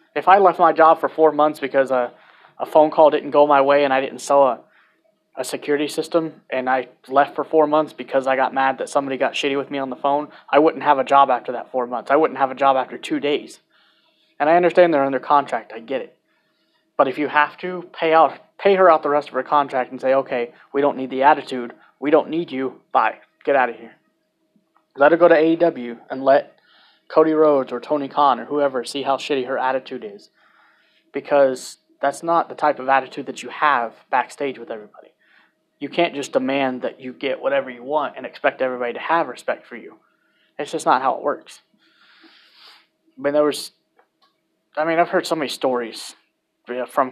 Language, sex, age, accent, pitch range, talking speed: English, male, 20-39, American, 130-155 Hz, 220 wpm